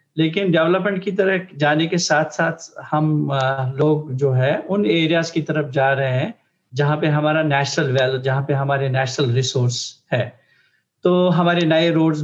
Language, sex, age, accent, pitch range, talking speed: Hindi, male, 50-69, native, 145-180 Hz, 170 wpm